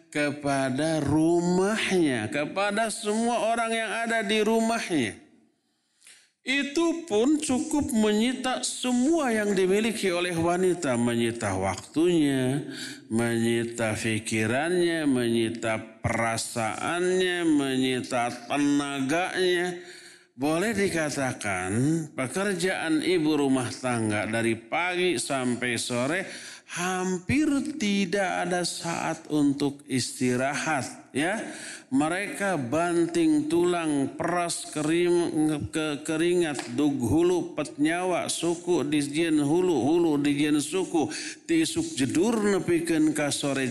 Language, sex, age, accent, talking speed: Indonesian, male, 50-69, native, 85 wpm